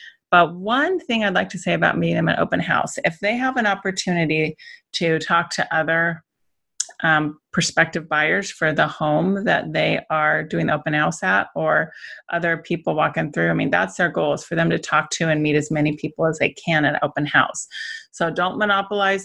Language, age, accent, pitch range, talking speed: English, 30-49, American, 155-190 Hz, 205 wpm